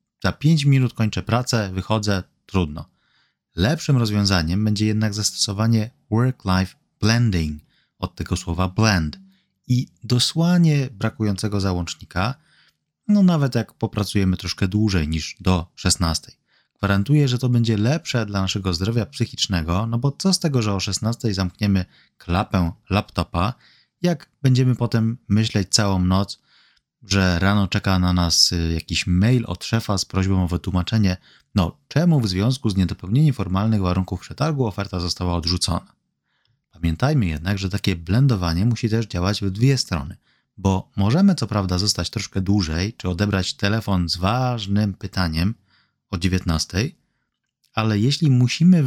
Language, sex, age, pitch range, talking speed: Polish, male, 30-49, 95-125 Hz, 135 wpm